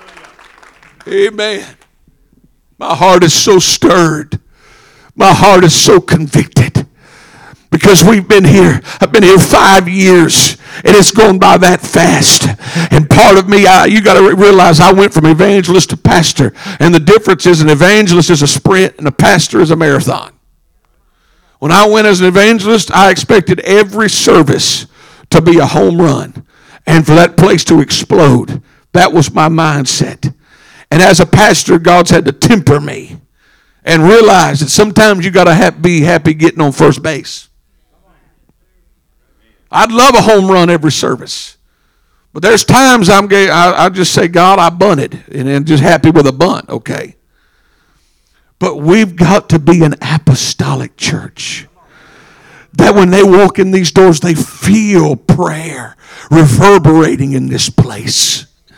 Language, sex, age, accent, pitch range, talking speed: English, male, 60-79, American, 150-190 Hz, 155 wpm